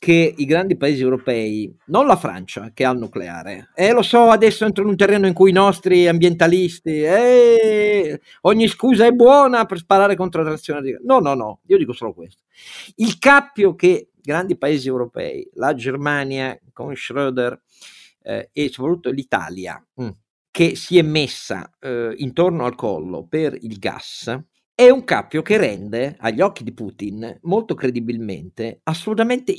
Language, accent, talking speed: Italian, native, 165 wpm